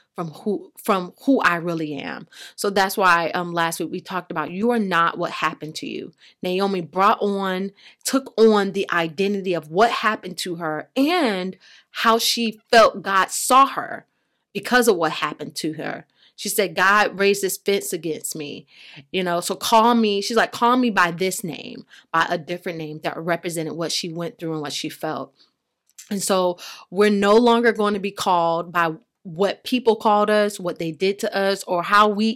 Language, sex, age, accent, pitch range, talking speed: English, female, 30-49, American, 175-220 Hz, 195 wpm